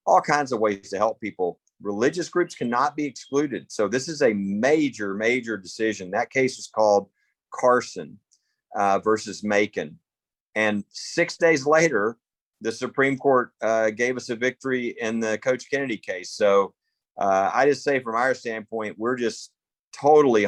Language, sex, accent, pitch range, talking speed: English, male, American, 105-135 Hz, 160 wpm